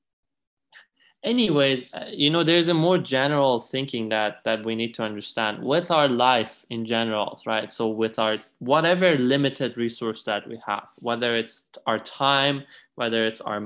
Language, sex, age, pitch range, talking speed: English, male, 20-39, 110-135 Hz, 160 wpm